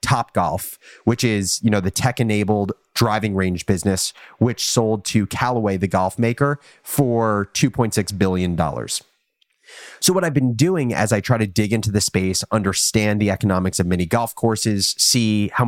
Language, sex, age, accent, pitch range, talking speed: English, male, 30-49, American, 100-125 Hz, 170 wpm